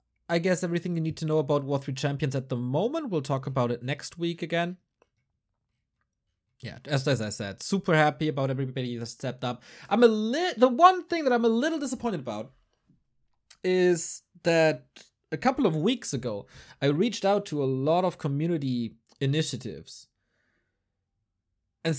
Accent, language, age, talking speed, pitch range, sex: German, English, 30-49, 170 wpm, 125-190 Hz, male